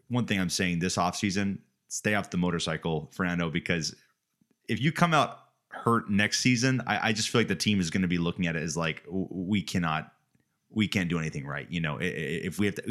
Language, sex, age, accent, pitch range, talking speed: English, male, 30-49, American, 80-100 Hz, 225 wpm